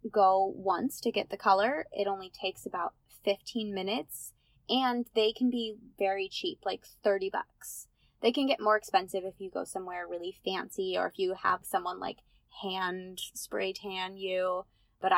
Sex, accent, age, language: female, American, 20-39, English